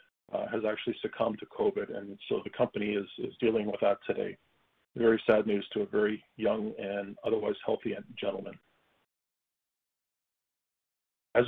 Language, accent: English, American